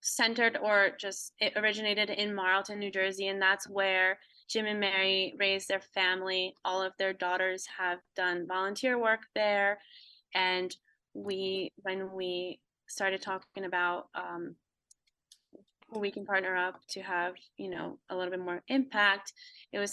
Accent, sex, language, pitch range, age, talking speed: American, female, English, 185-210 Hz, 20-39, 150 wpm